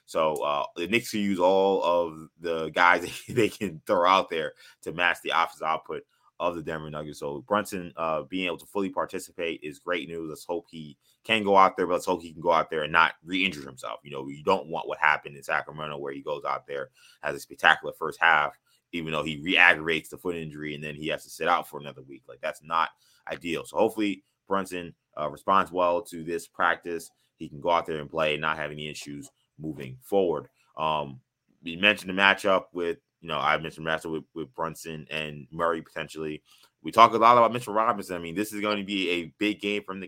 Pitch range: 80-100 Hz